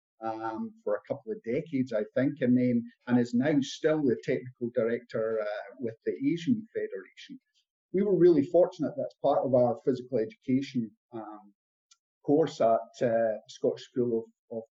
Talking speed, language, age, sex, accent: 165 wpm, English, 50-69, male, British